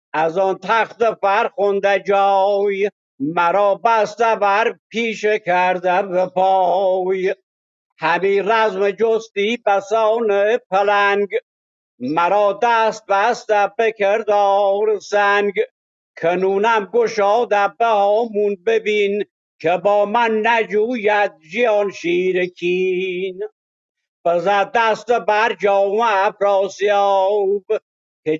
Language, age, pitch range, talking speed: Persian, 60-79, 195-220 Hz, 80 wpm